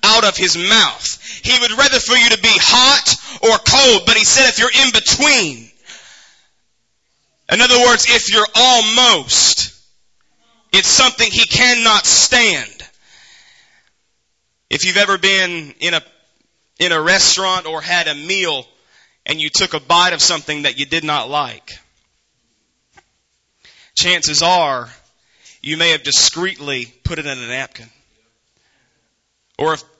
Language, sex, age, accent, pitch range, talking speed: English, male, 30-49, American, 155-210 Hz, 140 wpm